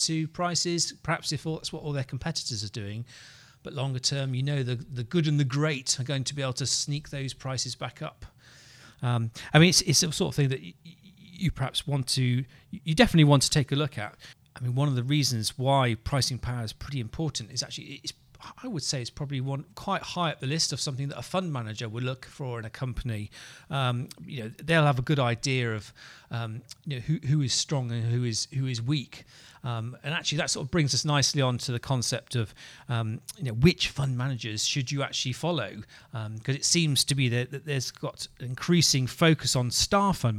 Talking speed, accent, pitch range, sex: 230 wpm, British, 120-150 Hz, male